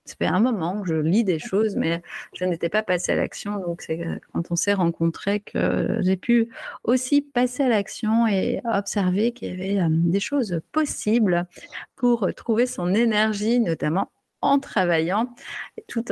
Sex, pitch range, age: female, 175-245 Hz, 30-49